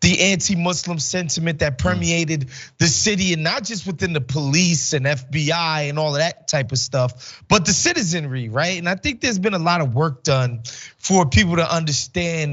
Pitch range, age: 140-185 Hz, 20-39